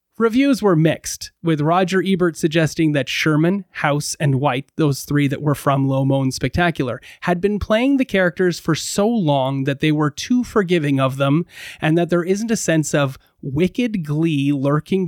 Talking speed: 180 wpm